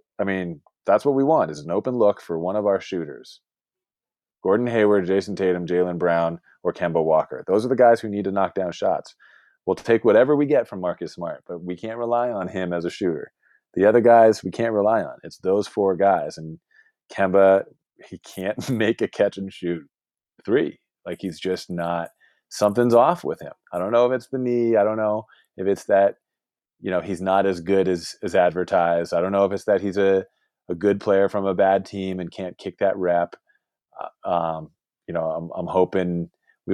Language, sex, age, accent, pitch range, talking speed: English, male, 30-49, American, 90-105 Hz, 205 wpm